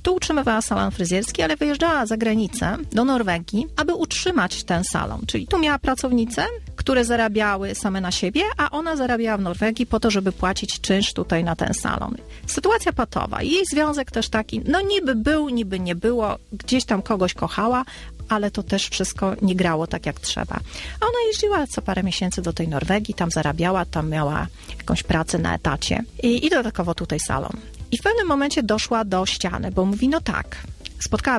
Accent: native